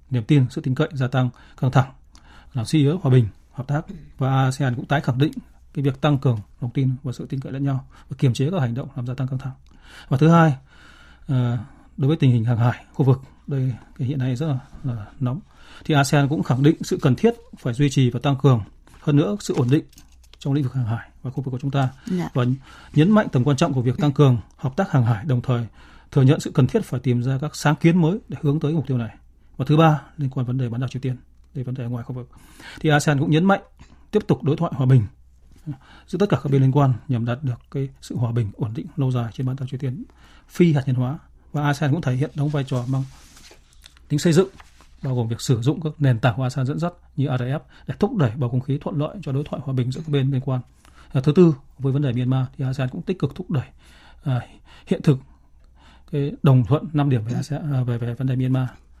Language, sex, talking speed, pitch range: Vietnamese, male, 260 wpm, 125-150 Hz